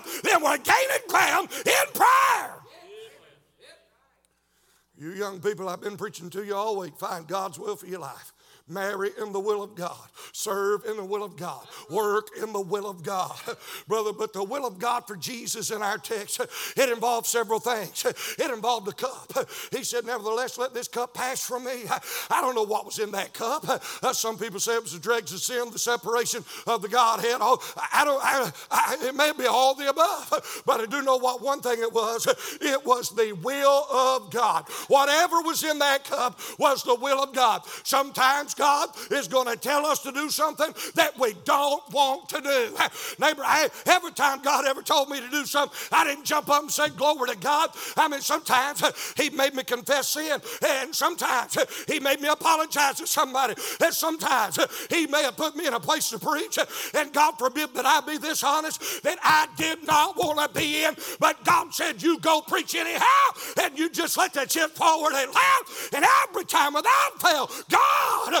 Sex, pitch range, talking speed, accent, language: male, 230-310 Hz, 205 wpm, American, English